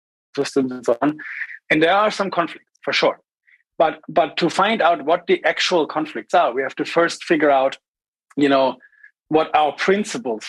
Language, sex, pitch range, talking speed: English, male, 140-180 Hz, 185 wpm